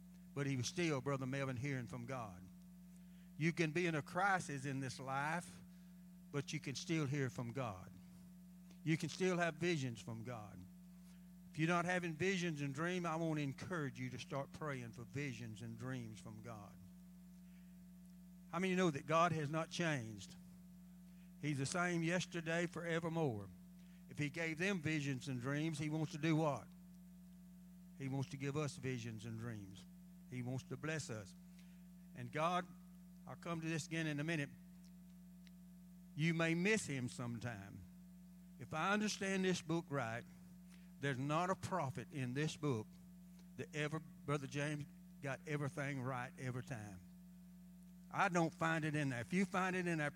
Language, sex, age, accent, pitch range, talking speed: English, male, 60-79, American, 140-180 Hz, 165 wpm